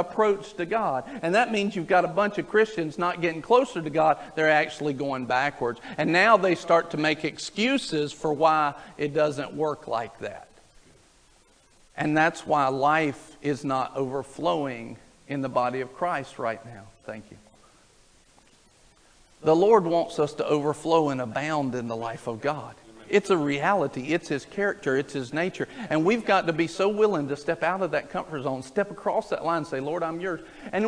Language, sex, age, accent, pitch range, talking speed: English, male, 50-69, American, 155-250 Hz, 185 wpm